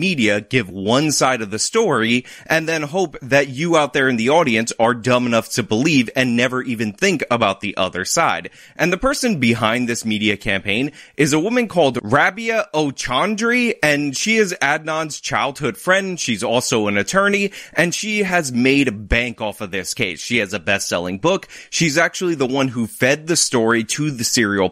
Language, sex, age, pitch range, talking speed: English, male, 30-49, 110-155 Hz, 190 wpm